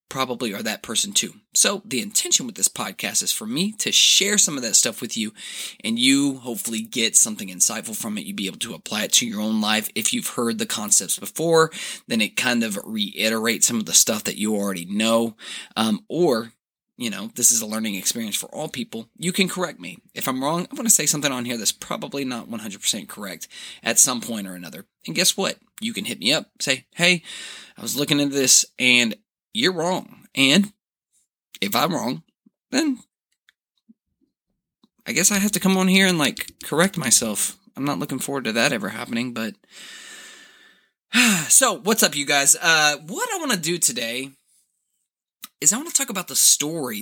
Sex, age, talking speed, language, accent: male, 20-39, 205 wpm, English, American